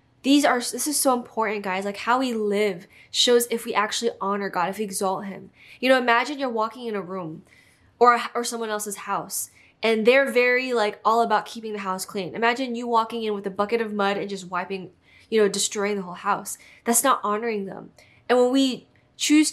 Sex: female